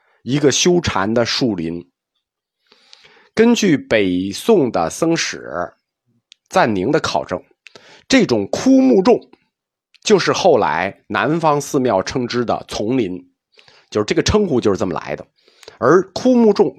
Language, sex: Chinese, male